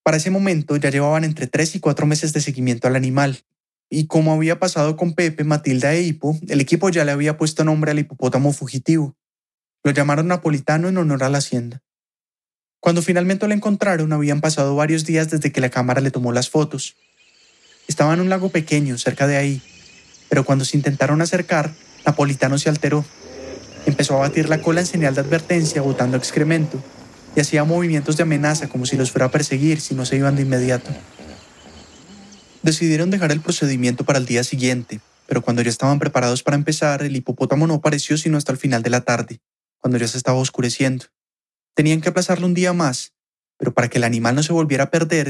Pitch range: 130-160 Hz